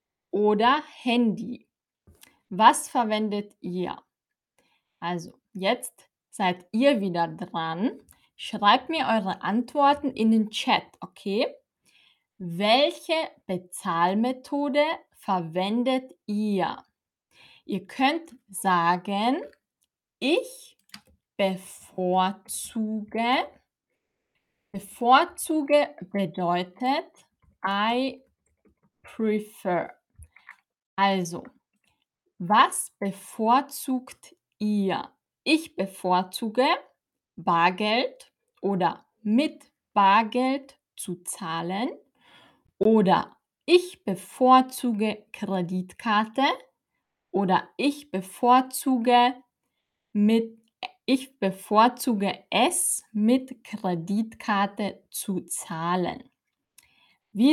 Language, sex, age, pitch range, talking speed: German, female, 20-39, 190-260 Hz, 60 wpm